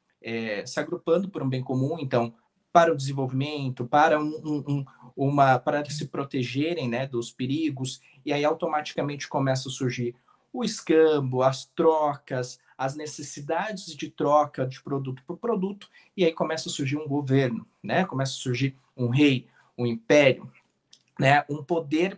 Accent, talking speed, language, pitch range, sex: Brazilian, 145 wpm, Portuguese, 135-175 Hz, male